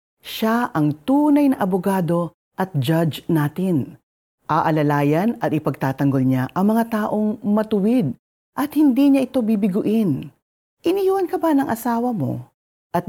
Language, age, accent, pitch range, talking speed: Filipino, 40-59, native, 150-235 Hz, 130 wpm